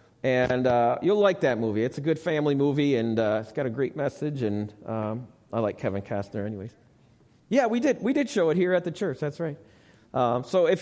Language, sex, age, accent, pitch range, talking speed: English, male, 40-59, American, 125-185 Hz, 225 wpm